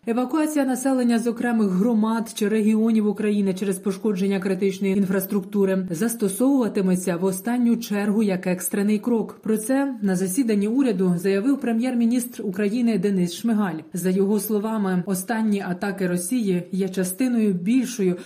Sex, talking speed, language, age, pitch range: female, 125 wpm, Ukrainian, 30-49, 190-225 Hz